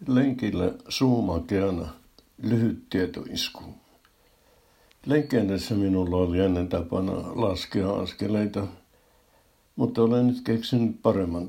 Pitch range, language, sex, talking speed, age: 95-110 Hz, Finnish, male, 80 wpm, 60-79